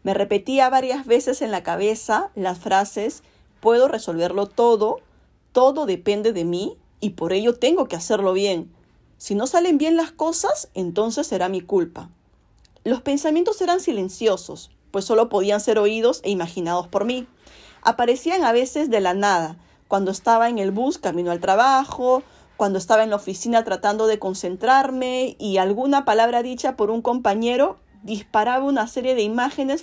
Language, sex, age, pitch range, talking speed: Spanish, female, 40-59, 200-270 Hz, 160 wpm